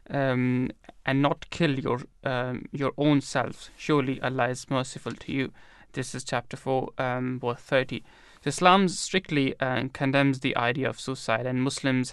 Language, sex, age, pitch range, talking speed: English, male, 20-39, 125-140 Hz, 160 wpm